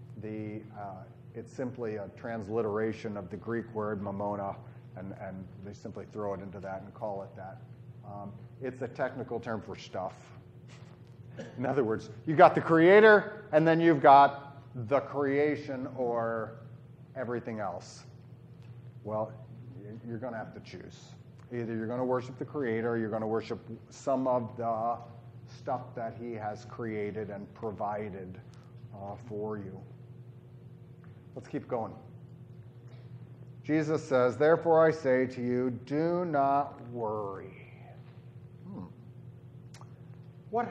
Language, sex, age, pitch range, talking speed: English, male, 40-59, 115-135 Hz, 135 wpm